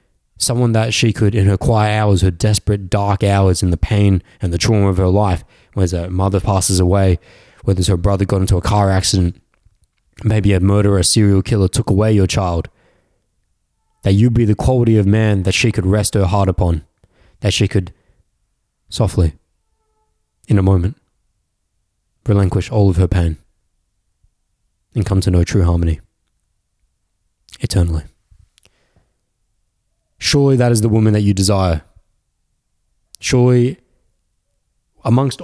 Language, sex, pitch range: English, male, 95-115 Hz